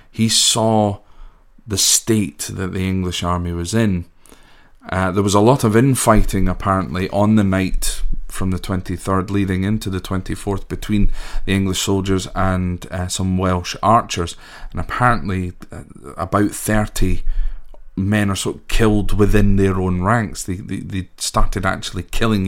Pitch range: 90-105 Hz